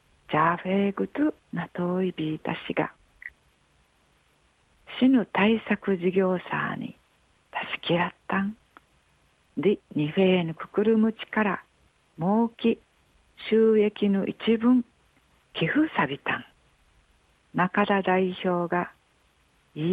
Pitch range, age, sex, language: 165-215 Hz, 50-69, female, Japanese